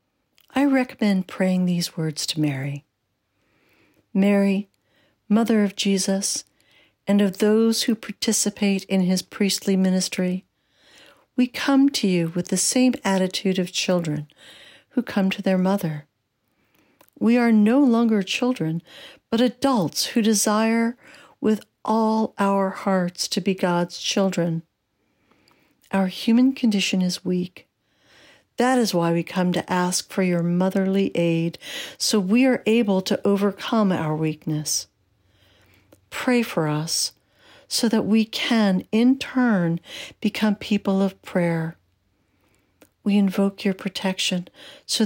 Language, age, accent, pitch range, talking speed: English, 60-79, American, 180-230 Hz, 125 wpm